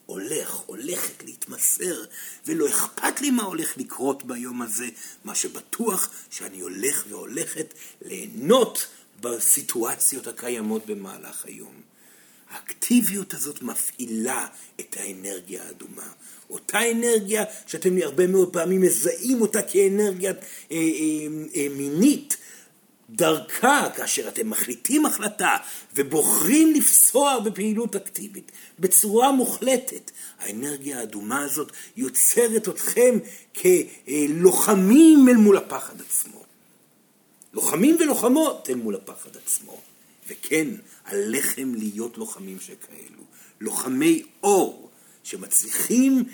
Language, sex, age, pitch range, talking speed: Hebrew, male, 50-69, 170-260 Hz, 95 wpm